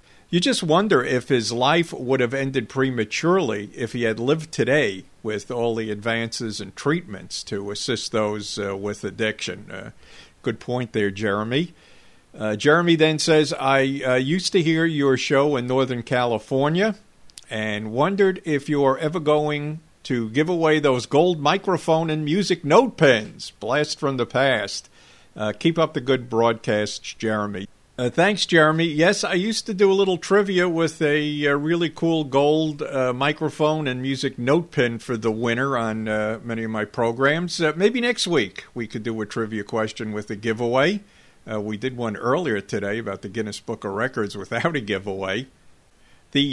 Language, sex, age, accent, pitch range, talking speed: English, male, 50-69, American, 110-155 Hz, 175 wpm